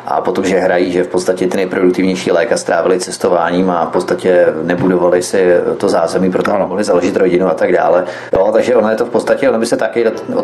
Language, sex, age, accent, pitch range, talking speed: Czech, male, 30-49, native, 95-120 Hz, 220 wpm